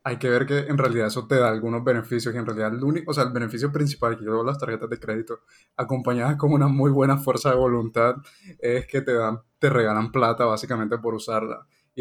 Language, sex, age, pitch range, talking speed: Spanish, male, 20-39, 115-135 Hz, 235 wpm